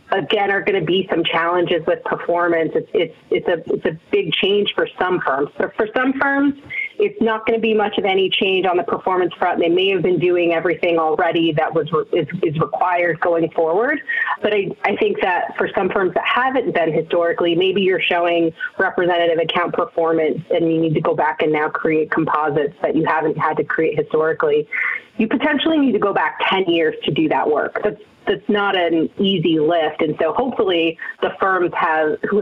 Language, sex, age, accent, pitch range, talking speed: English, female, 30-49, American, 165-230 Hz, 205 wpm